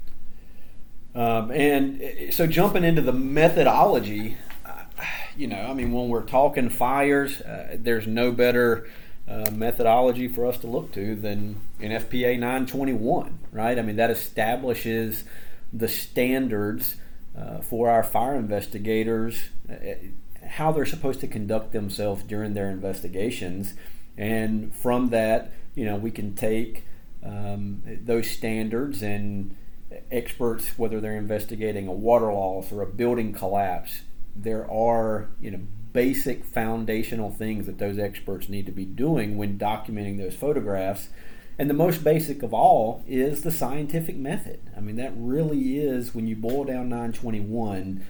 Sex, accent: male, American